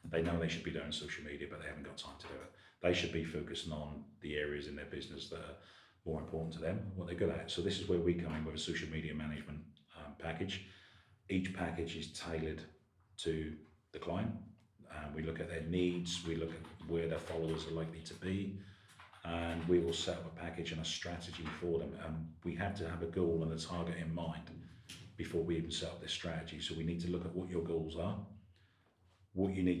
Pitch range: 80-90 Hz